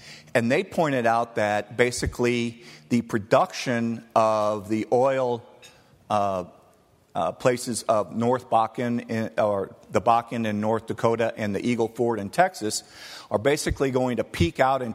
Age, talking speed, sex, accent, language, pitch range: 50-69, 145 wpm, male, American, English, 110-135 Hz